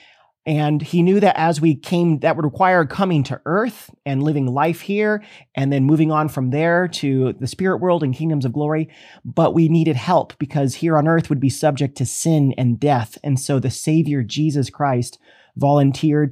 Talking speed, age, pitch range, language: 195 wpm, 30-49, 130-165 Hz, English